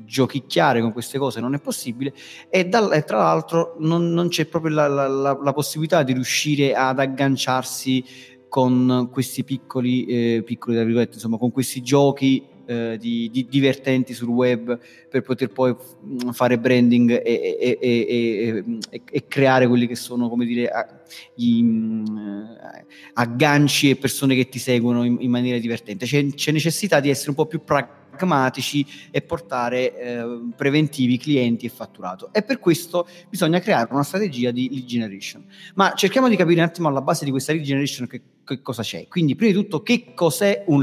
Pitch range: 120-155 Hz